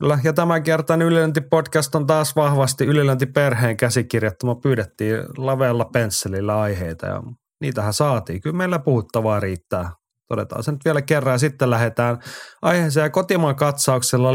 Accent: native